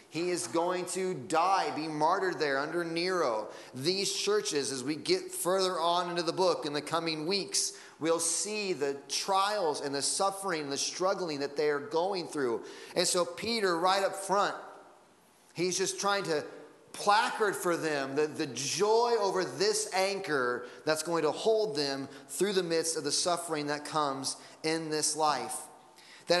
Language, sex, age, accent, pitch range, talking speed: English, male, 30-49, American, 145-190 Hz, 170 wpm